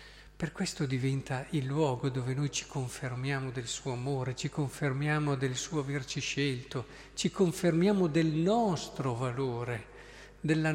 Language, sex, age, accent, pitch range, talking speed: Italian, male, 50-69, native, 130-170 Hz, 135 wpm